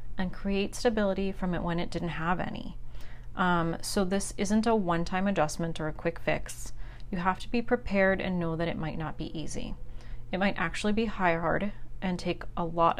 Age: 30-49